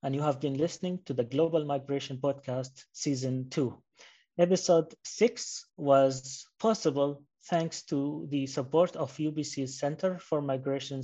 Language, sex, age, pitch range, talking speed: English, male, 30-49, 130-155 Hz, 135 wpm